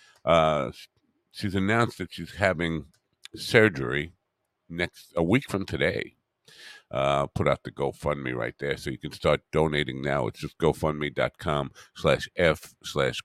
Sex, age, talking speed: male, 50-69, 140 wpm